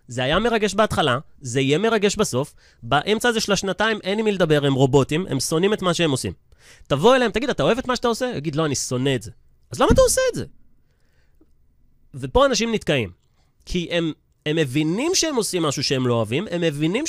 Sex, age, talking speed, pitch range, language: male, 30-49, 215 wpm, 125-210 Hz, Hebrew